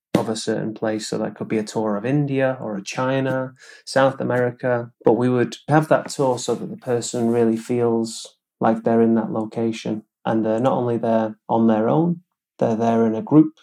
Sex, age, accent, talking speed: male, 30-49, British, 210 wpm